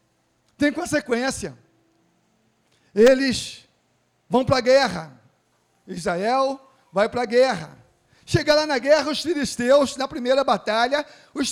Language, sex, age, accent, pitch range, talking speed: Portuguese, male, 40-59, Brazilian, 245-320 Hz, 115 wpm